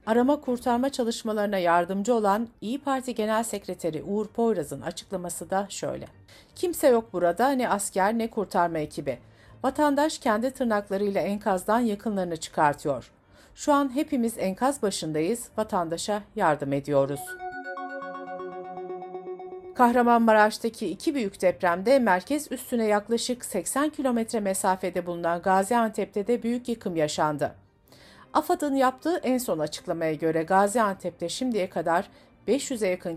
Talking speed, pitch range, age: 110 wpm, 175-245 Hz, 60-79